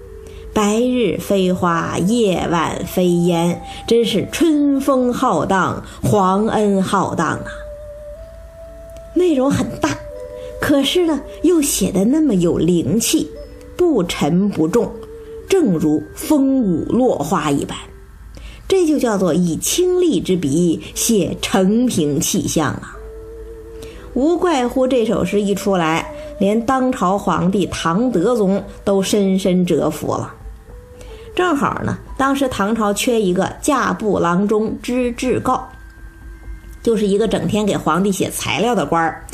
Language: Chinese